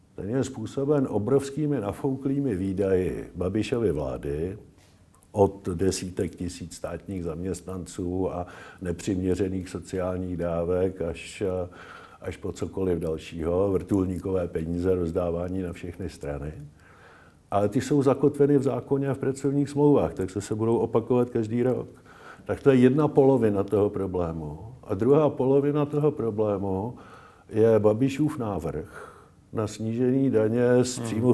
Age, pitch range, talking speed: 50-69, 95-135 Hz, 125 wpm